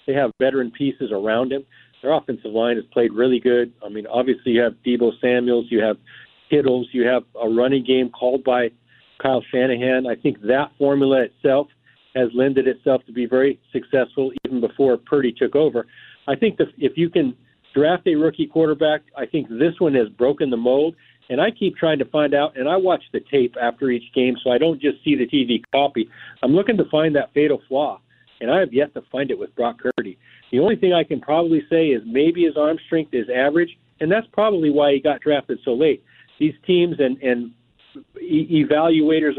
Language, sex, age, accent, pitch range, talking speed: English, male, 40-59, American, 125-160 Hz, 205 wpm